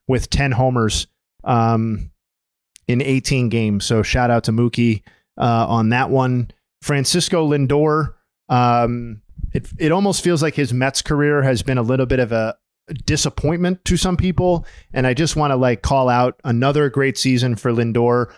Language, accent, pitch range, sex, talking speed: English, American, 120-145 Hz, male, 165 wpm